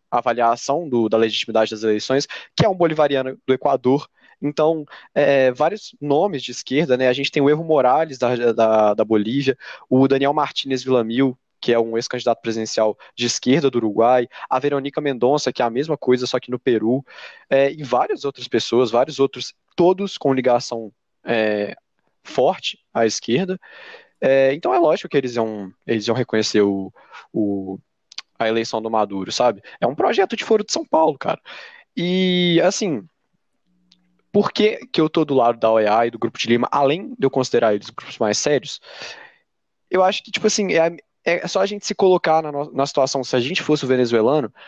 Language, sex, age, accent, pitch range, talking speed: Portuguese, male, 20-39, Brazilian, 115-155 Hz, 190 wpm